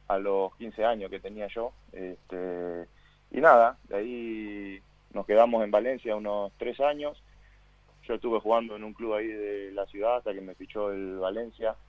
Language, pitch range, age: Spanish, 95-110 Hz, 20-39